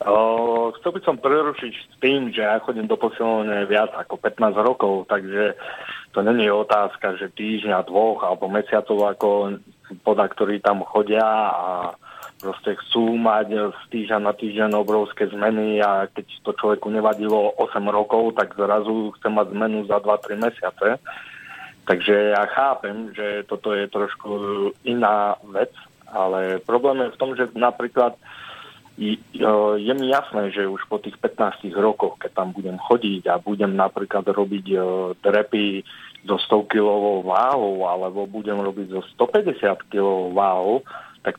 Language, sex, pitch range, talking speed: Slovak, male, 100-120 Hz, 150 wpm